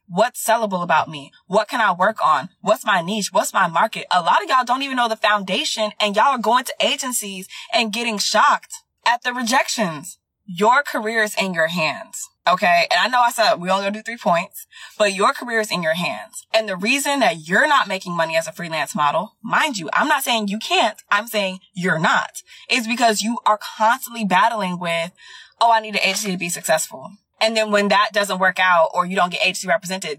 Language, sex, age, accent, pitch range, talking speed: English, female, 20-39, American, 180-230 Hz, 220 wpm